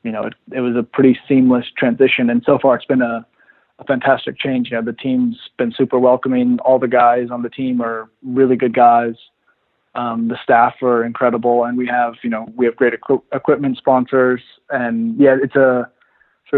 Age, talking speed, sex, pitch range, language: 20-39, 200 wpm, male, 120-130 Hz, English